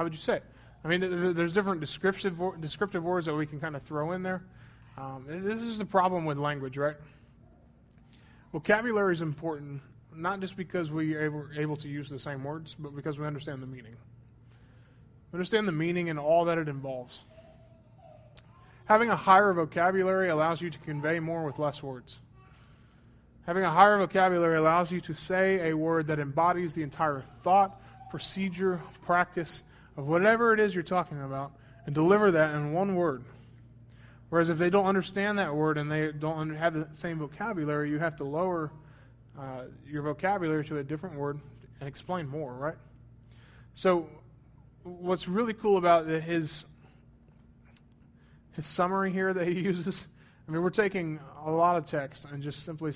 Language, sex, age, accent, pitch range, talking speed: English, male, 20-39, American, 135-175 Hz, 170 wpm